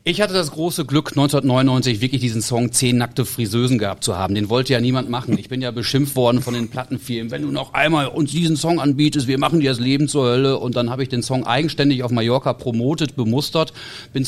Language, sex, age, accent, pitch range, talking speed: German, male, 40-59, German, 120-150 Hz, 230 wpm